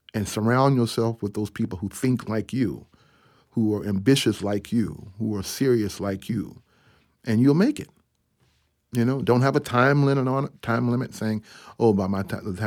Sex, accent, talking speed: male, American, 195 wpm